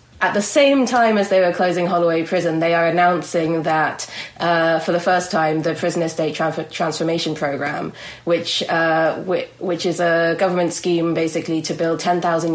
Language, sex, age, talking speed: English, female, 20-39, 175 wpm